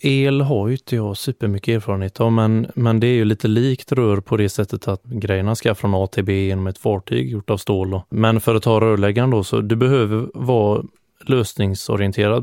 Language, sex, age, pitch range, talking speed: Swedish, male, 20-39, 100-115 Hz, 205 wpm